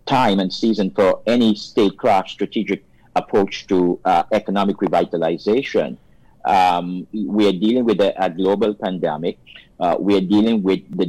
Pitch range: 90-105 Hz